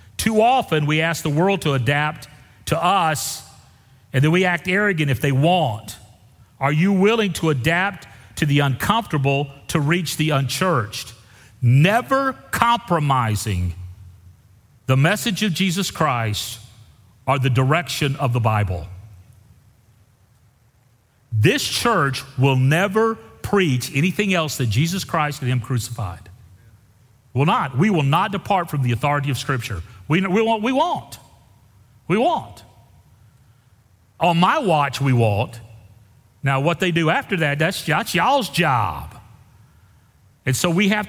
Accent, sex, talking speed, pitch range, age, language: American, male, 135 wpm, 115-170 Hz, 40-59, English